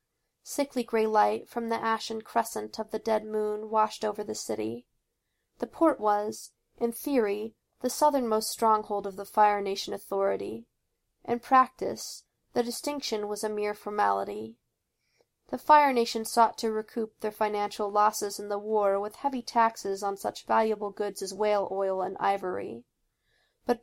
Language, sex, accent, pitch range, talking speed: English, female, American, 195-230 Hz, 155 wpm